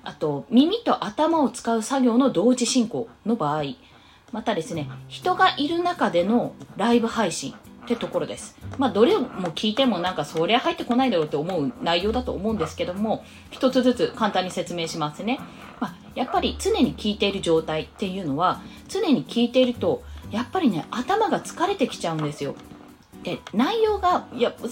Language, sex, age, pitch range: Japanese, female, 20-39, 170-260 Hz